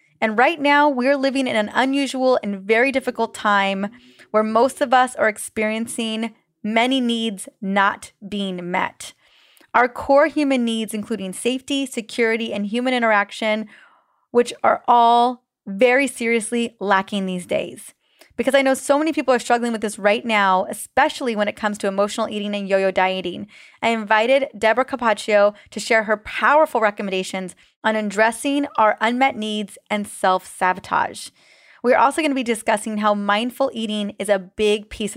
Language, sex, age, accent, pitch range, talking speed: English, female, 20-39, American, 205-255 Hz, 155 wpm